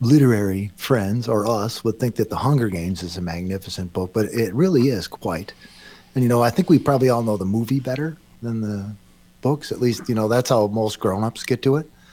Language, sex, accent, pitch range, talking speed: English, male, American, 105-130 Hz, 225 wpm